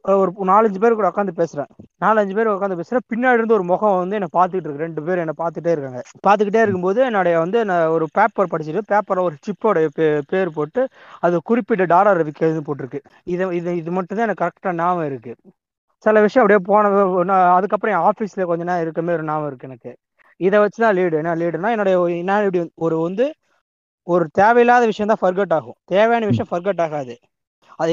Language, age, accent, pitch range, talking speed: Tamil, 20-39, native, 165-205 Hz, 180 wpm